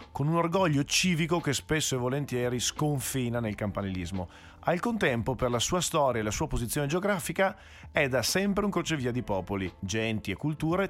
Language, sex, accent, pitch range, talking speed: Italian, male, native, 105-160 Hz, 175 wpm